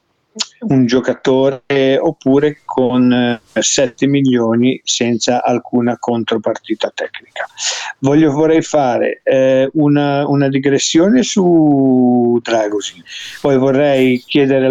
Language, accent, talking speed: Italian, native, 85 wpm